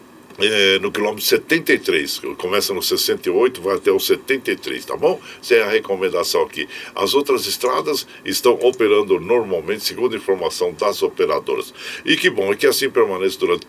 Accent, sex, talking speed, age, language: Brazilian, male, 160 wpm, 60-79, Portuguese